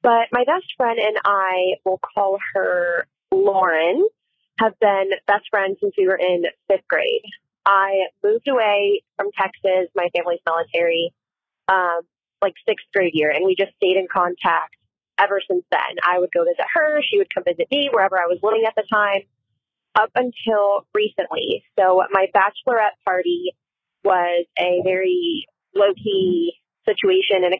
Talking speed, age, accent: 160 wpm, 20-39, American